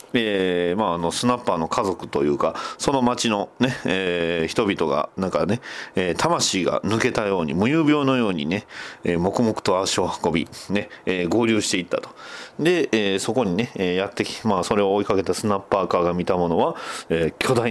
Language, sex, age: Japanese, male, 40-59